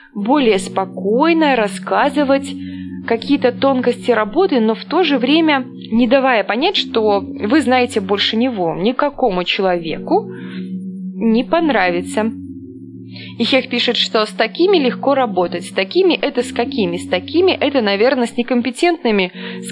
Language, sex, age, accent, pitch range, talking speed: Russian, female, 20-39, native, 200-270 Hz, 135 wpm